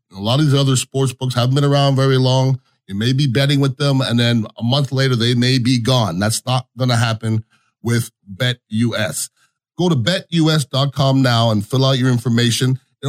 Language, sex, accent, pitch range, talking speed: English, male, American, 120-145 Hz, 200 wpm